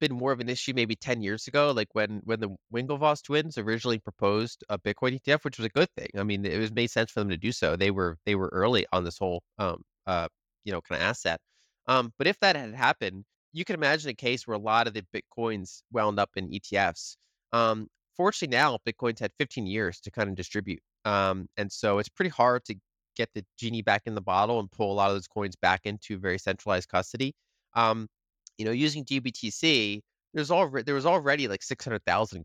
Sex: male